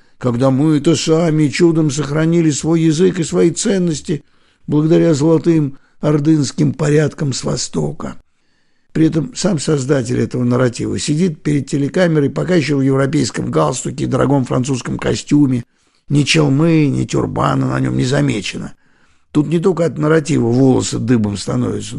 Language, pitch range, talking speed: Russian, 135-165 Hz, 140 wpm